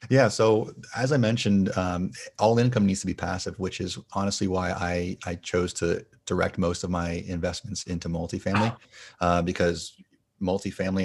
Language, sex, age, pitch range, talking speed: English, male, 30-49, 85-100 Hz, 170 wpm